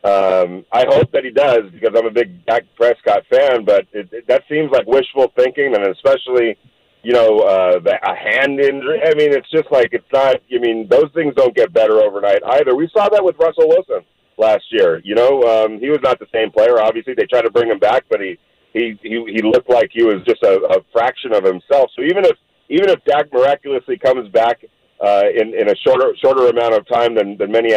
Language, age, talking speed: English, 40-59, 230 wpm